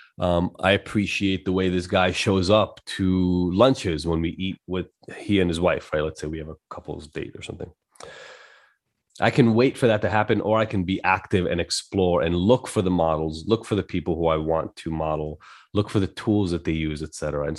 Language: English